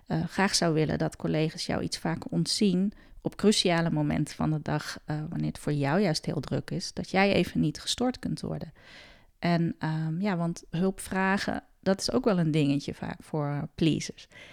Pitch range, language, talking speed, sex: 160-200 Hz, Dutch, 190 wpm, female